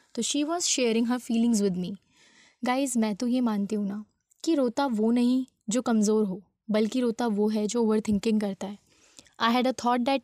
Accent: native